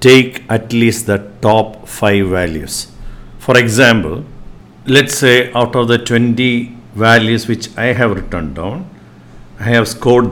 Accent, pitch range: Indian, 105-125 Hz